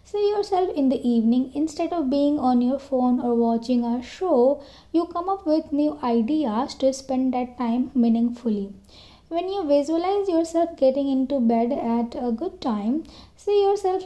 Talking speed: 165 wpm